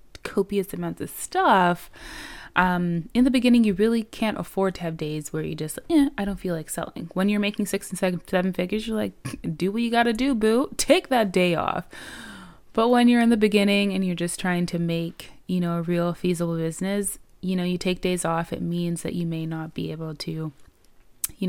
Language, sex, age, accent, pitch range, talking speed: English, female, 20-39, American, 170-210 Hz, 220 wpm